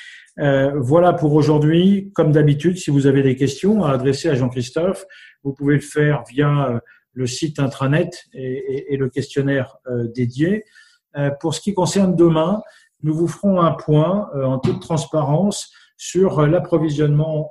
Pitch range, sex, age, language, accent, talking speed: 125-155 Hz, male, 50-69, French, French, 160 wpm